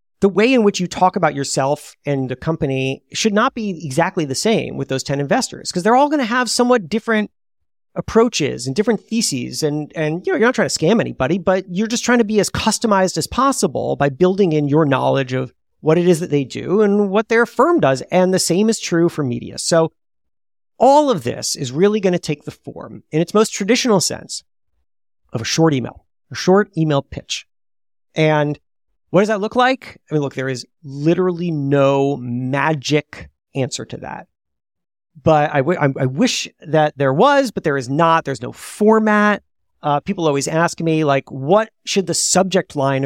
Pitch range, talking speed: 140-210 Hz, 200 wpm